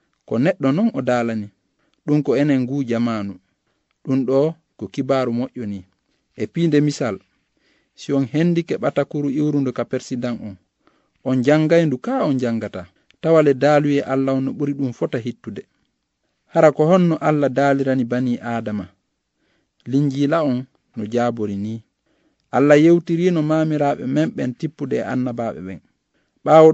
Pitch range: 120-150 Hz